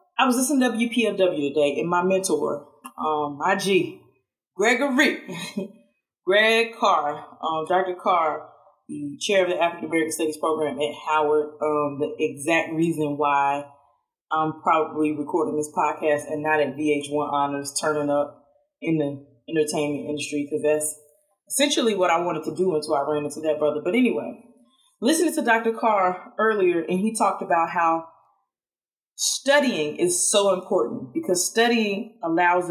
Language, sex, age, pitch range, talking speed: English, female, 20-39, 150-220 Hz, 150 wpm